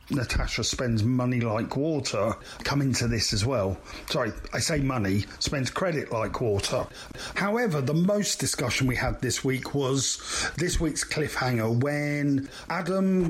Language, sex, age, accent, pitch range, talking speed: English, male, 40-59, British, 125-160 Hz, 145 wpm